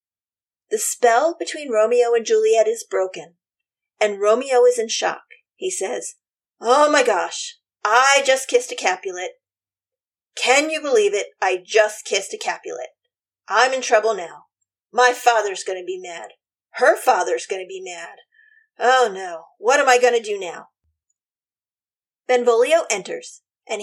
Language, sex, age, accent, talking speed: English, female, 40-59, American, 150 wpm